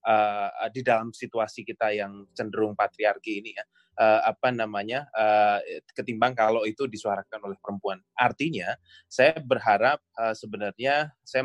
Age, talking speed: 20-39, 135 wpm